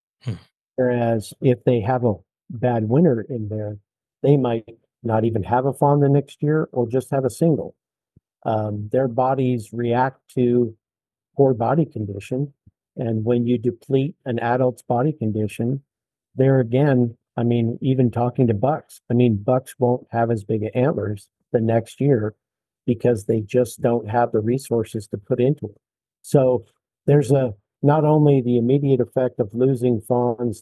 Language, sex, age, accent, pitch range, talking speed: English, male, 50-69, American, 115-135 Hz, 160 wpm